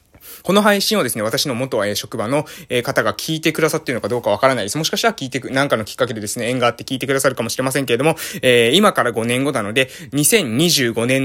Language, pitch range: Japanese, 125-175 Hz